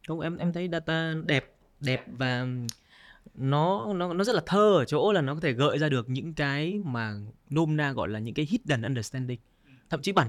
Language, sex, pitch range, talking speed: Vietnamese, male, 115-155 Hz, 215 wpm